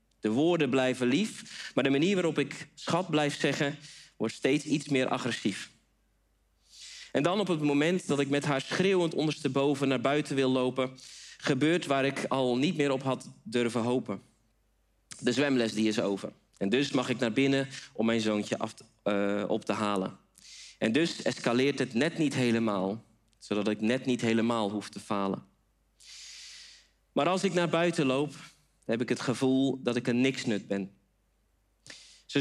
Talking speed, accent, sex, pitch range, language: 170 wpm, Dutch, male, 110-150 Hz, Dutch